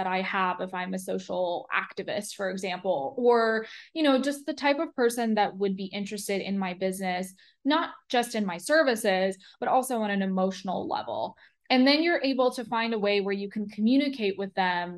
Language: English